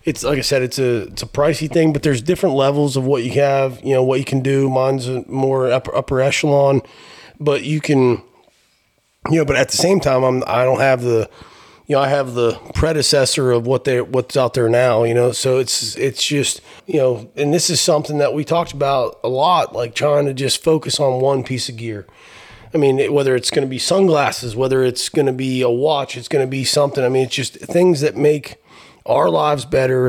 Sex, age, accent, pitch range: male, 30-49, American, 125-145 Hz